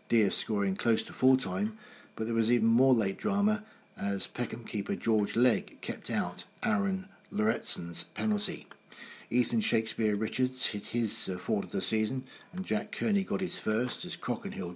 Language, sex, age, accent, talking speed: English, male, 60-79, British, 165 wpm